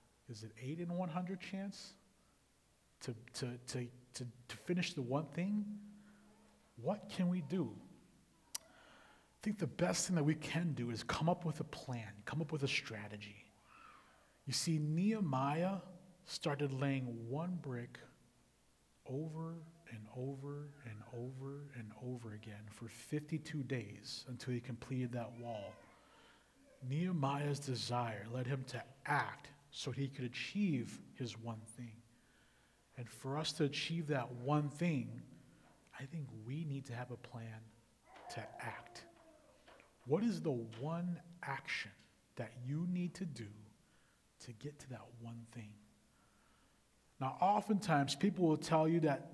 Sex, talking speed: male, 140 wpm